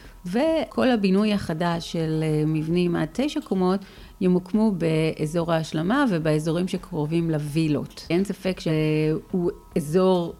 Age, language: 40-59, Hebrew